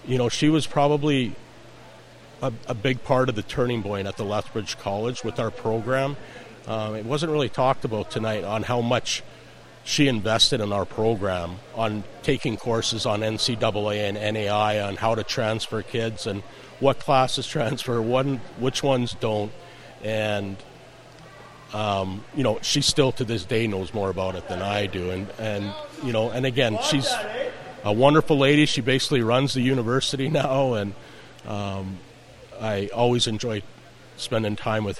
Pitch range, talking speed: 105-130 Hz, 160 wpm